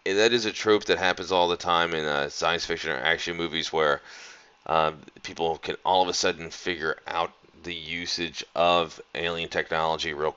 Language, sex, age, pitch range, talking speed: English, male, 30-49, 80-100 Hz, 190 wpm